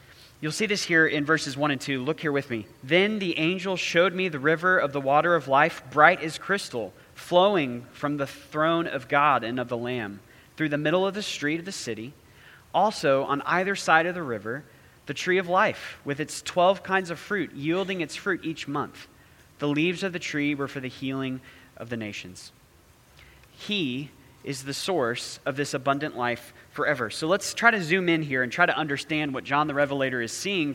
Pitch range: 135-175 Hz